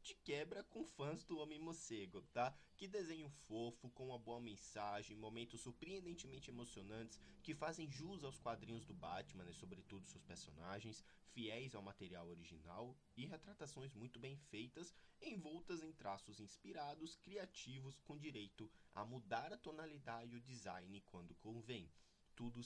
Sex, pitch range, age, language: male, 95-135 Hz, 20-39, Portuguese